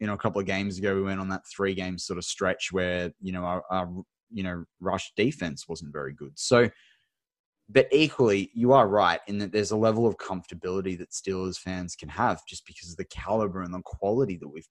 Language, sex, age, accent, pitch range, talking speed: English, male, 20-39, Australian, 95-115 Hz, 230 wpm